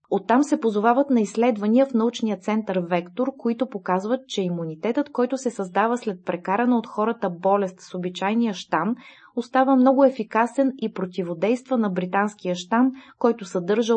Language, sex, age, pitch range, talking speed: Bulgarian, female, 20-39, 185-240 Hz, 145 wpm